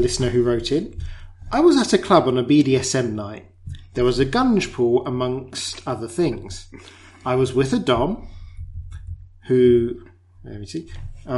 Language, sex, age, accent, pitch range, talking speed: English, male, 40-59, British, 95-140 Hz, 165 wpm